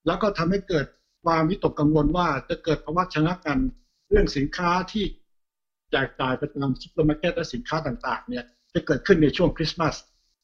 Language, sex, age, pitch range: Thai, male, 60-79, 140-175 Hz